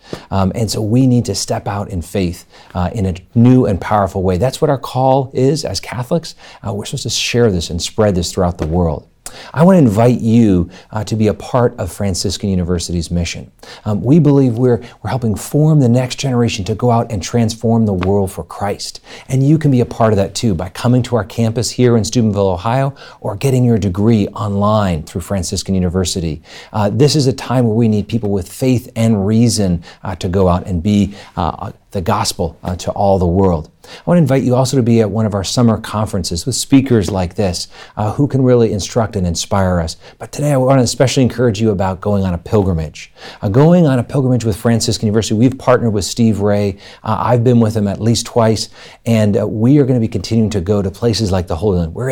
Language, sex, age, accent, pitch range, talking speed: English, male, 40-59, American, 95-125 Hz, 230 wpm